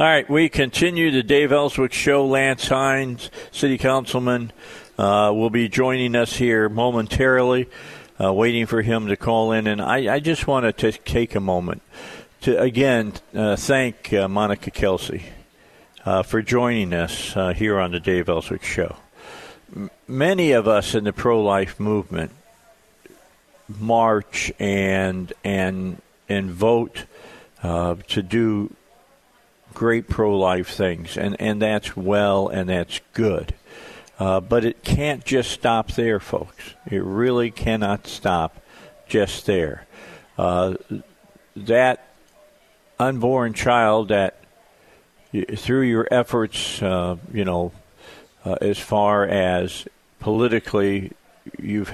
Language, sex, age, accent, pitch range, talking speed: English, male, 50-69, American, 95-120 Hz, 125 wpm